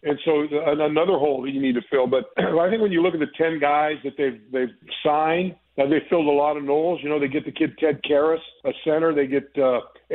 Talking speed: 250 wpm